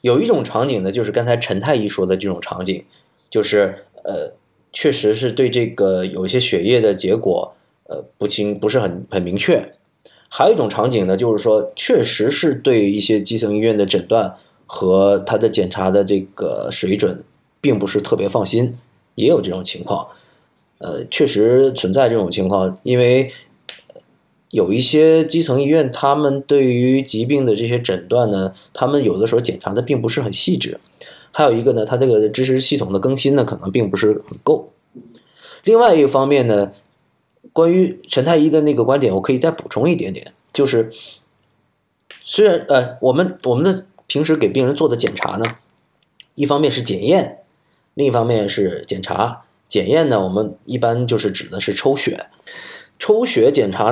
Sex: male